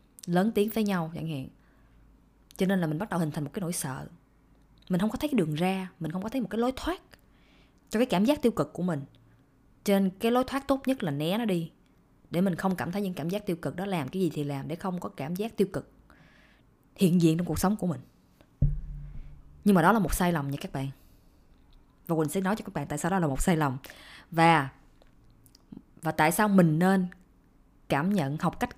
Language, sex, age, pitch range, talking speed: Vietnamese, female, 20-39, 155-205 Hz, 240 wpm